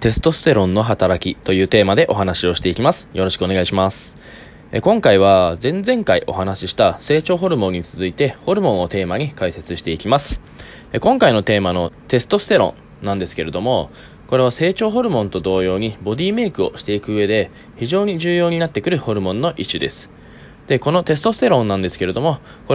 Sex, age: male, 20-39